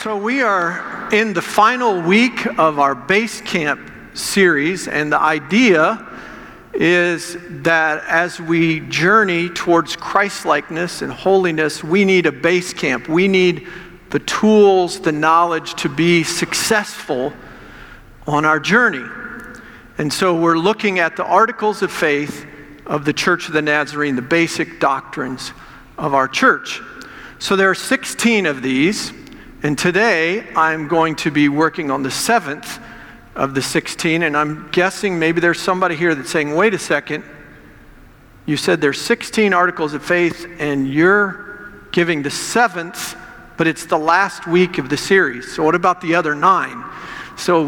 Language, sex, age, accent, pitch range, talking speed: English, male, 50-69, American, 150-190 Hz, 150 wpm